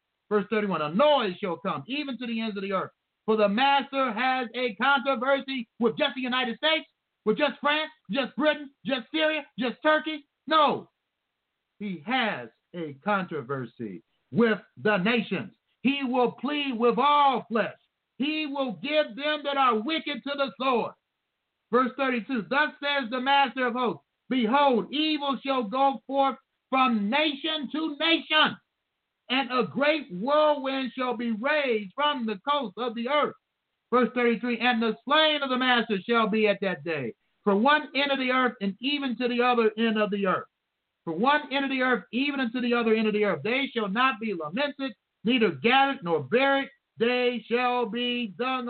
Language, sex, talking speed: English, male, 175 wpm